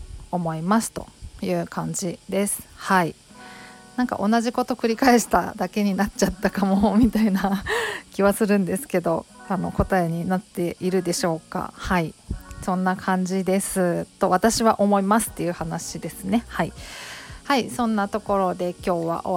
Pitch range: 180-225 Hz